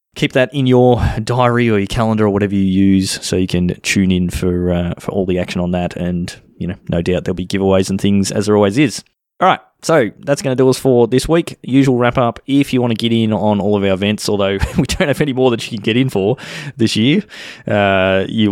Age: 20-39